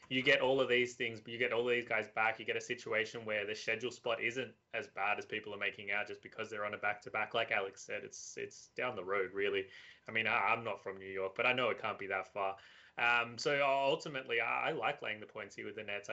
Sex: male